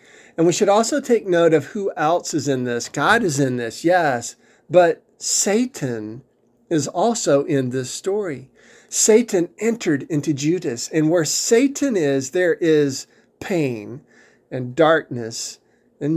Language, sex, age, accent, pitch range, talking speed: English, male, 50-69, American, 140-215 Hz, 140 wpm